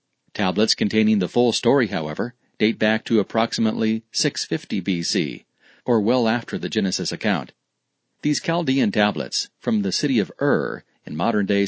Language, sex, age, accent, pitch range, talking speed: English, male, 40-59, American, 105-130 Hz, 145 wpm